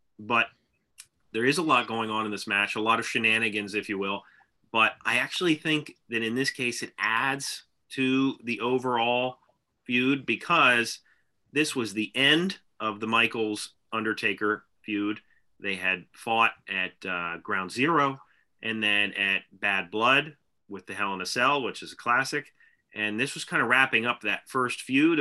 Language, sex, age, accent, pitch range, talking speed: English, male, 30-49, American, 105-135 Hz, 175 wpm